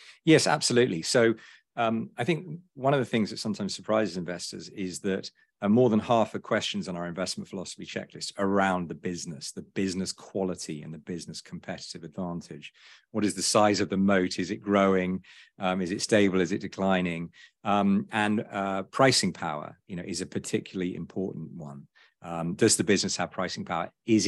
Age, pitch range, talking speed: 50-69, 90-110 Hz, 185 wpm